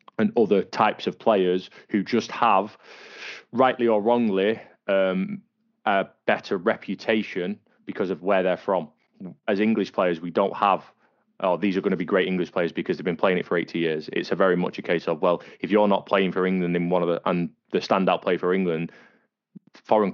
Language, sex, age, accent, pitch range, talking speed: English, male, 20-39, British, 85-105 Hz, 205 wpm